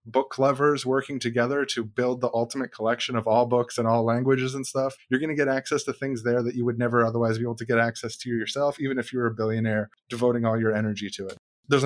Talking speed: 250 wpm